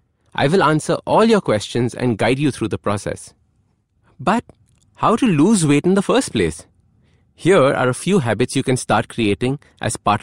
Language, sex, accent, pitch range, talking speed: English, male, Indian, 110-165 Hz, 190 wpm